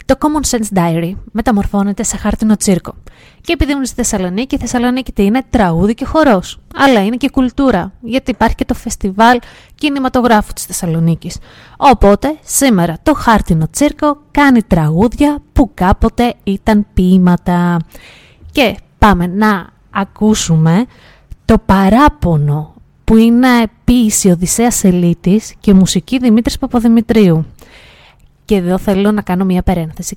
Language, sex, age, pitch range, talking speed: Greek, female, 20-39, 190-245 Hz, 125 wpm